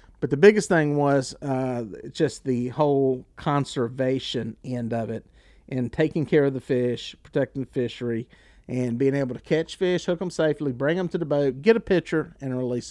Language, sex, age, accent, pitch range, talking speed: English, male, 40-59, American, 125-170 Hz, 190 wpm